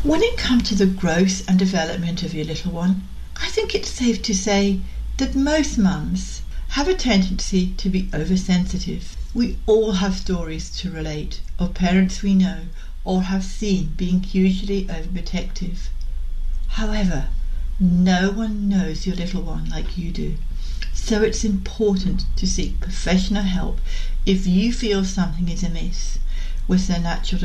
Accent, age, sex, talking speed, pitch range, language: British, 60-79, female, 150 wpm, 175-205 Hz, English